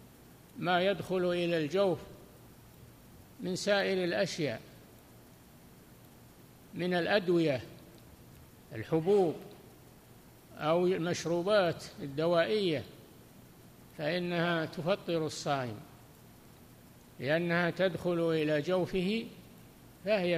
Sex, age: male, 60-79